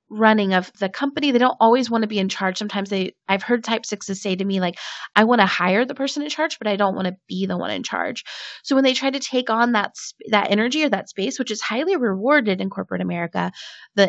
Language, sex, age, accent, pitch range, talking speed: English, female, 30-49, American, 185-230 Hz, 265 wpm